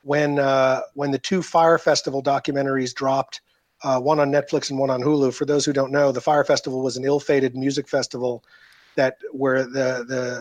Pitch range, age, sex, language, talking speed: 130-150 Hz, 40-59, male, English, 195 wpm